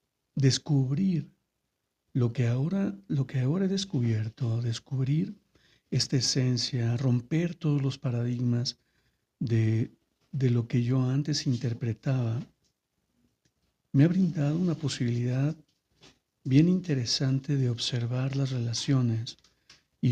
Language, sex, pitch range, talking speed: Spanish, male, 120-140 Hz, 105 wpm